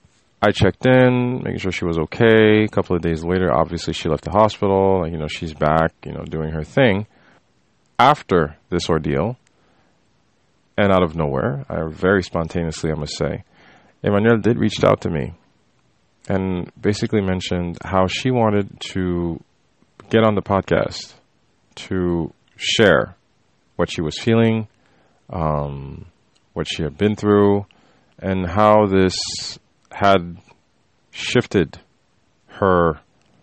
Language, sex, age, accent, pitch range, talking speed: English, male, 30-49, American, 85-105 Hz, 135 wpm